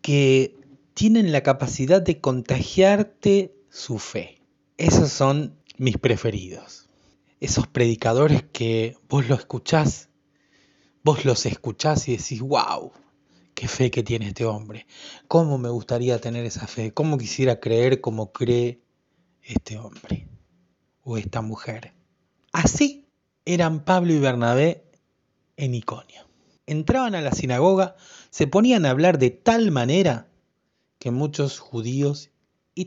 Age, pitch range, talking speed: 30-49, 115-155 Hz, 120 wpm